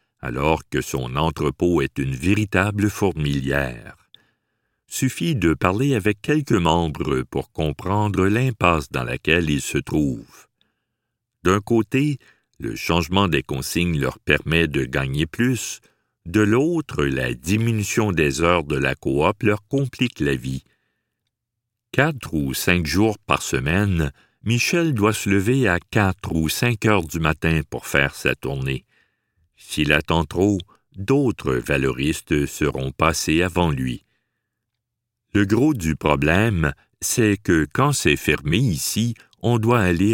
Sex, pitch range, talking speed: male, 75-110 Hz, 135 wpm